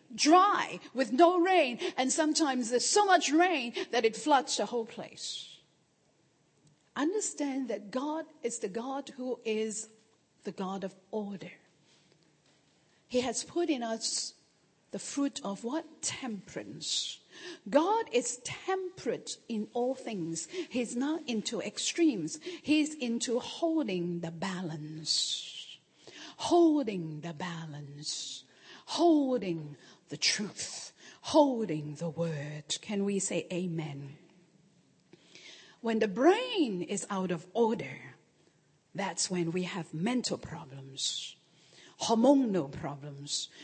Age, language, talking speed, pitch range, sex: 50-69, English, 110 wpm, 165-280 Hz, female